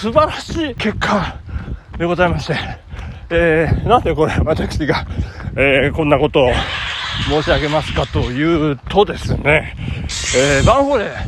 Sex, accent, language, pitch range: male, native, Japanese, 170-270 Hz